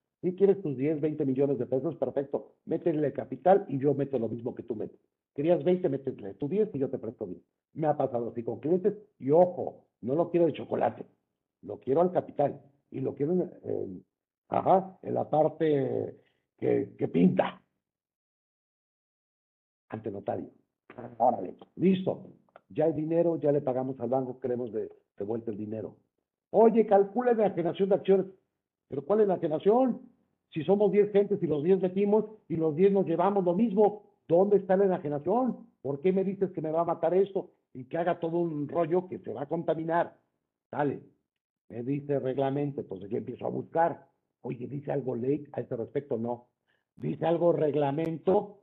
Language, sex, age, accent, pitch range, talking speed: Spanish, male, 50-69, Mexican, 140-190 Hz, 190 wpm